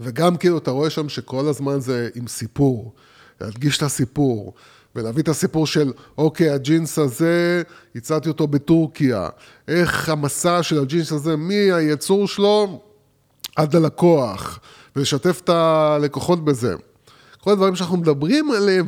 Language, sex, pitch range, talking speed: Hebrew, male, 120-160 Hz, 125 wpm